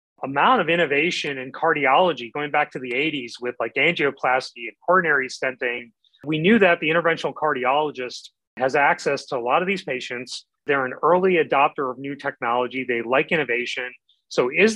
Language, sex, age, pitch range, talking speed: English, male, 30-49, 130-165 Hz, 170 wpm